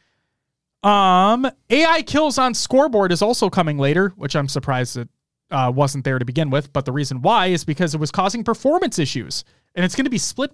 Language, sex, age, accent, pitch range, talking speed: English, male, 30-49, American, 150-220 Hz, 205 wpm